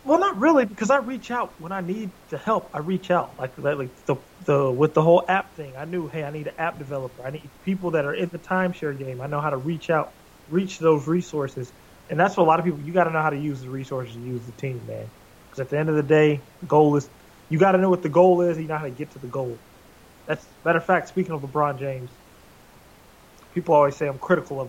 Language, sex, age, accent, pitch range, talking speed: English, male, 20-39, American, 140-180 Hz, 270 wpm